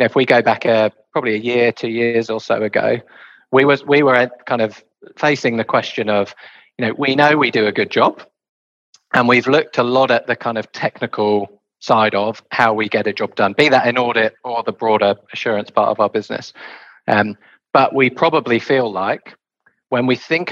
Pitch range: 110-130 Hz